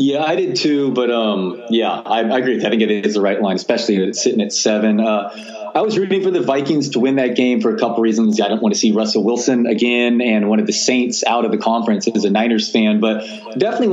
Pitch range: 105-130 Hz